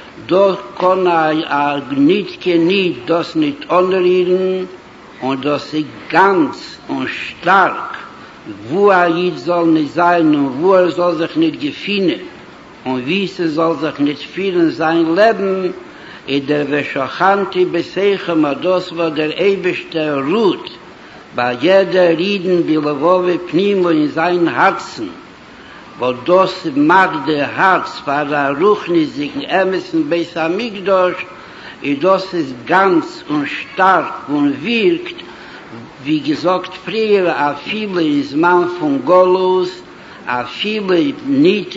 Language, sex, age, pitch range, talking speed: Hebrew, male, 60-79, 165-200 Hz, 125 wpm